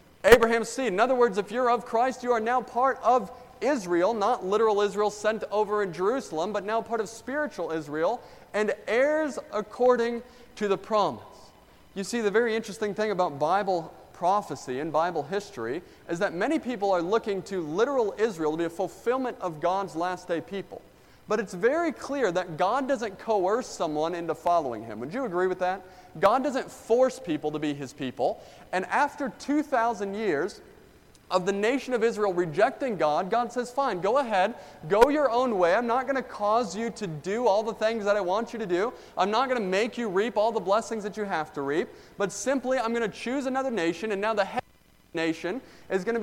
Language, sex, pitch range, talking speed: English, male, 185-250 Hz, 205 wpm